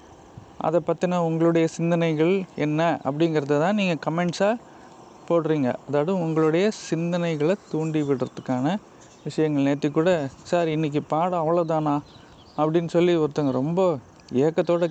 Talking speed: 110 wpm